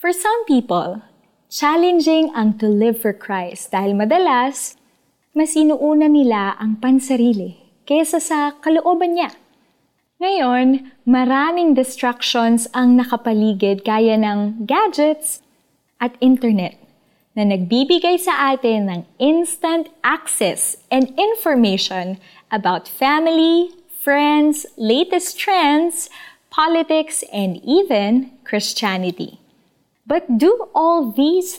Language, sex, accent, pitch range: Filipino, female, native, 215-305 Hz